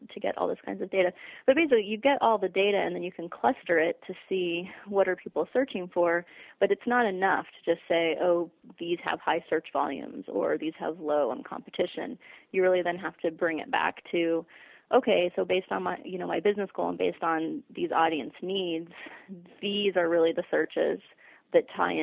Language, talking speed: English, 210 wpm